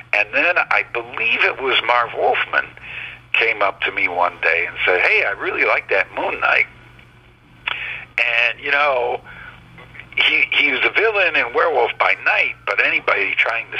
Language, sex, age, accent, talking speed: English, male, 60-79, American, 170 wpm